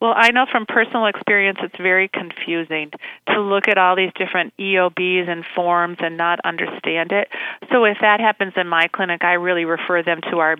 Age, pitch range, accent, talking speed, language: 40-59, 175-225 Hz, American, 200 wpm, English